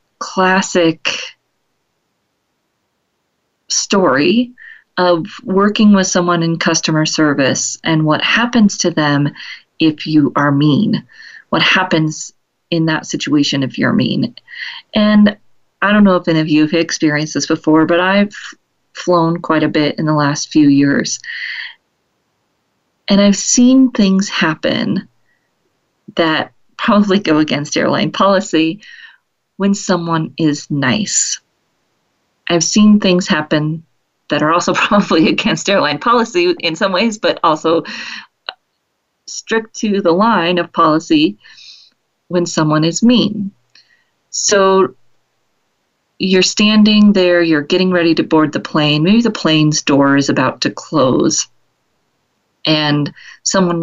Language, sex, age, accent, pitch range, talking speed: English, female, 40-59, American, 155-205 Hz, 125 wpm